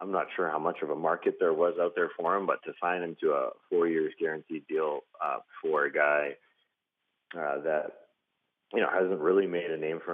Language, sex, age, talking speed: English, male, 30-49, 225 wpm